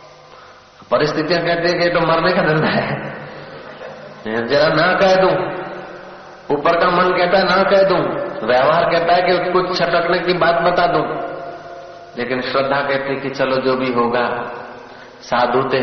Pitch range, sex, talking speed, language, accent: 155-195 Hz, male, 155 wpm, Hindi, native